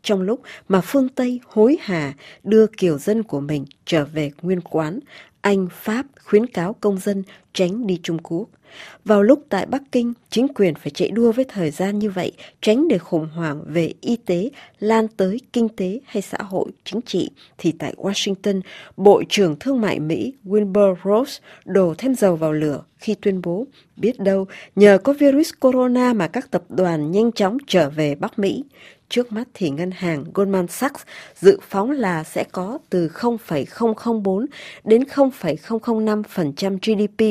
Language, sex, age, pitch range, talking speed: Vietnamese, female, 20-39, 175-225 Hz, 170 wpm